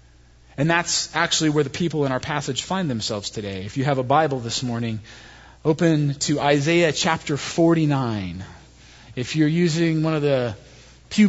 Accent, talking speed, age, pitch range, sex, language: American, 165 wpm, 30-49, 140-185 Hz, male, English